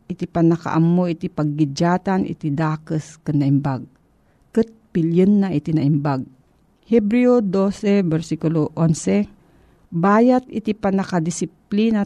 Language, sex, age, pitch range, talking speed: Filipino, female, 40-59, 160-205 Hz, 100 wpm